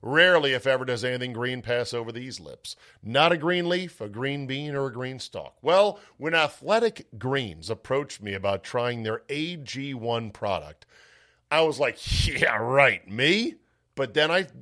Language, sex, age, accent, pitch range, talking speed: English, male, 50-69, American, 115-160 Hz, 170 wpm